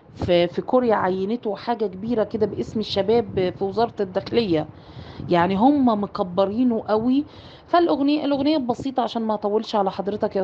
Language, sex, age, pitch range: Arabic, female, 30-49, 200-250 Hz